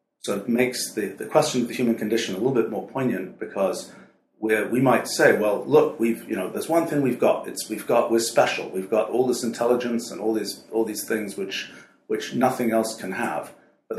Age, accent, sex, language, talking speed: 40-59, British, male, English, 225 wpm